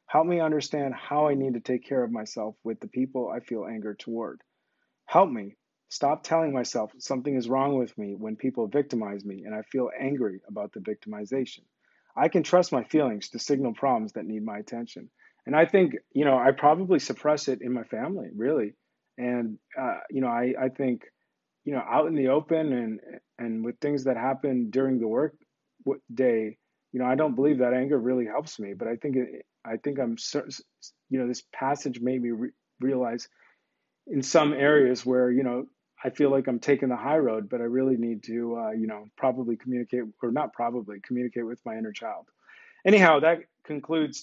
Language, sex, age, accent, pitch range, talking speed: English, male, 30-49, American, 120-145 Hz, 200 wpm